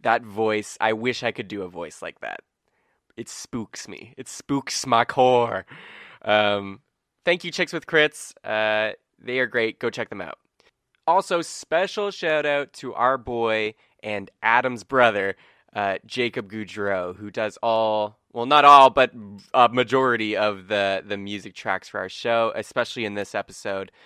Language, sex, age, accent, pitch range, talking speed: English, male, 20-39, American, 105-130 Hz, 160 wpm